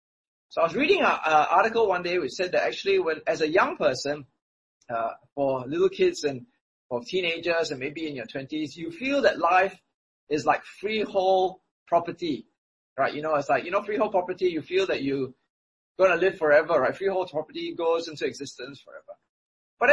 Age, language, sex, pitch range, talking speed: 20-39, English, male, 145-225 Hz, 185 wpm